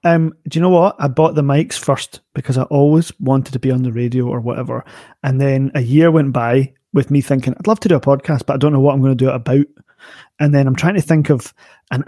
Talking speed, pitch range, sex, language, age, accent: 275 wpm, 130-160 Hz, male, English, 30-49, British